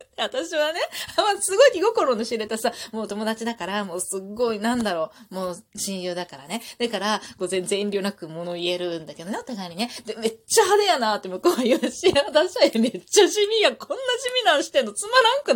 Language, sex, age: Japanese, female, 20-39